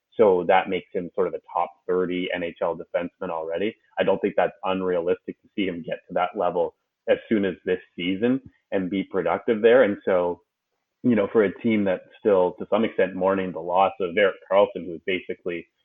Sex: male